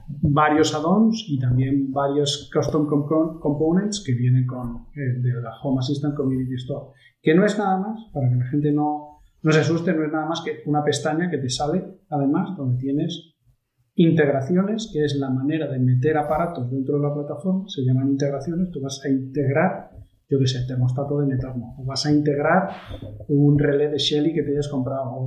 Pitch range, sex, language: 130-155 Hz, male, Spanish